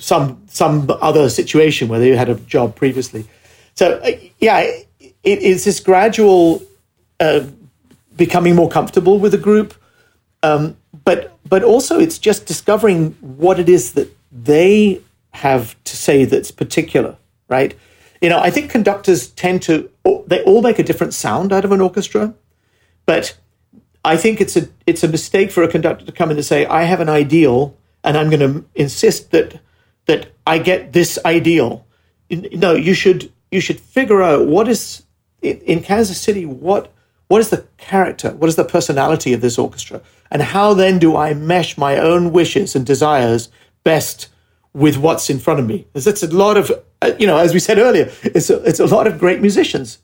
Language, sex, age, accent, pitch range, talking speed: English, male, 50-69, British, 150-200 Hz, 180 wpm